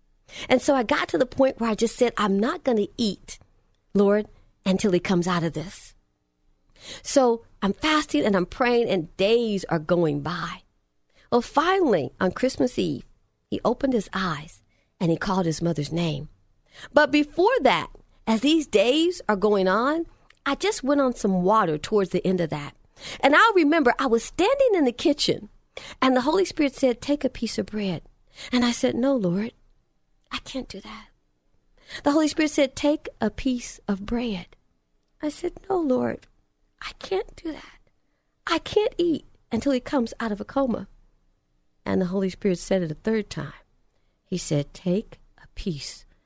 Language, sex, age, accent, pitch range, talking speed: English, female, 50-69, American, 180-275 Hz, 180 wpm